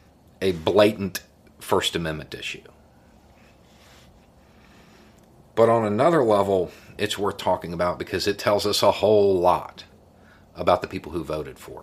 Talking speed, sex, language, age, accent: 130 wpm, male, English, 50-69, American